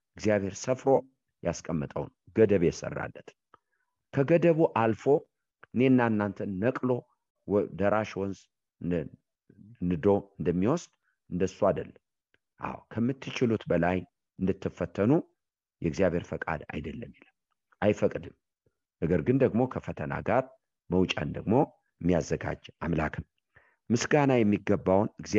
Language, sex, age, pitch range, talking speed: English, male, 50-69, 90-125 Hz, 50 wpm